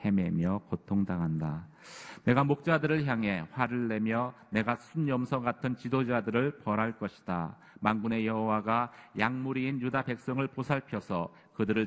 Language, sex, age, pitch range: Korean, male, 40-59, 95-120 Hz